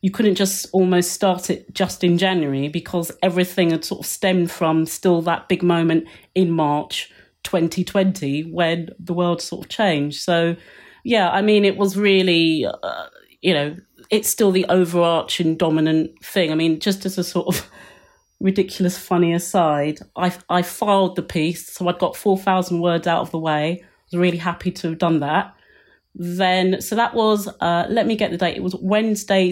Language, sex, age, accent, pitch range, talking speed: English, female, 30-49, British, 175-205 Hz, 185 wpm